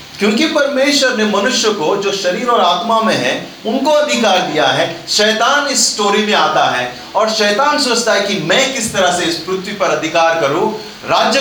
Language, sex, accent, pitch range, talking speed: Hindi, male, native, 180-250 Hz, 190 wpm